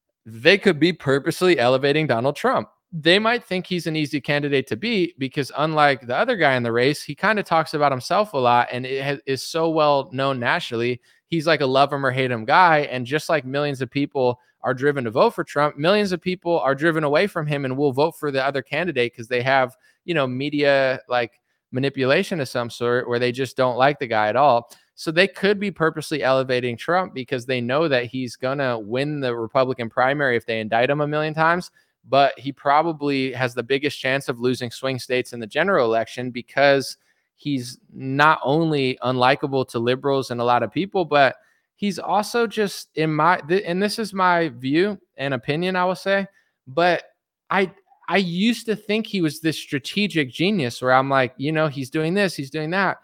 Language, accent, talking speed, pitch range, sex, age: English, American, 210 wpm, 130-170 Hz, male, 20-39